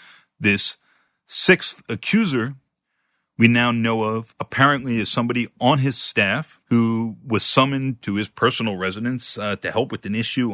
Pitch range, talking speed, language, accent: 105-130 Hz, 150 wpm, English, American